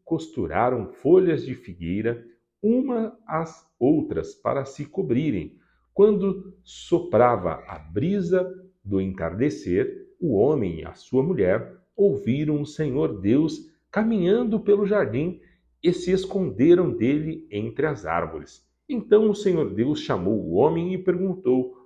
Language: Portuguese